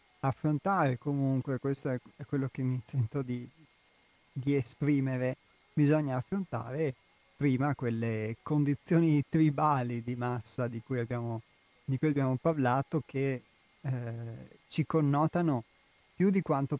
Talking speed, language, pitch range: 120 wpm, Italian, 125-145 Hz